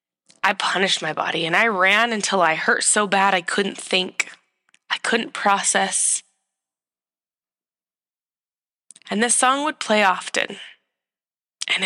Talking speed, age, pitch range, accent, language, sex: 125 wpm, 20-39, 180-225 Hz, American, English, female